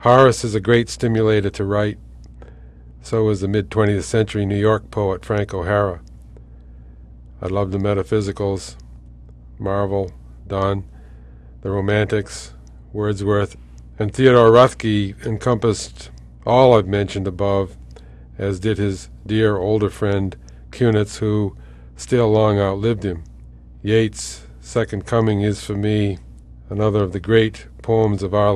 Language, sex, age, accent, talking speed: English, male, 50-69, American, 125 wpm